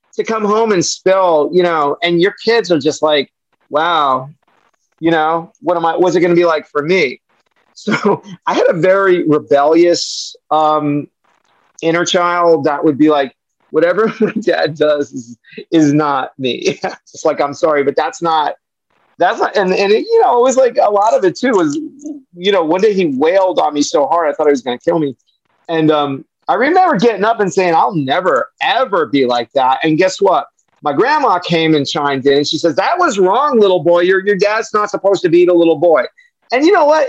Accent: American